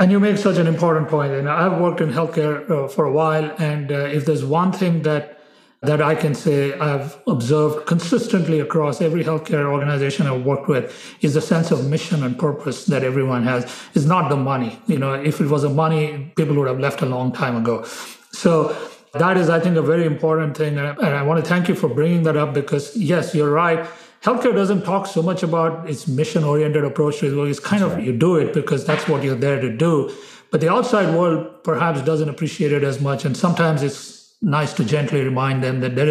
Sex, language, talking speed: male, English, 215 wpm